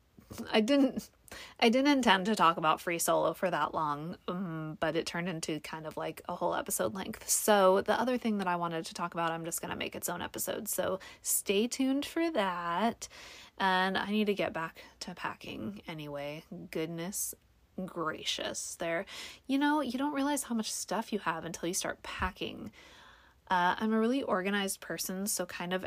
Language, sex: English, female